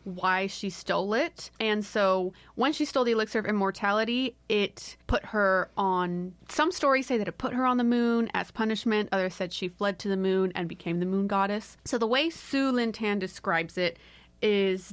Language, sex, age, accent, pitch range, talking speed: English, female, 30-49, American, 185-230 Hz, 195 wpm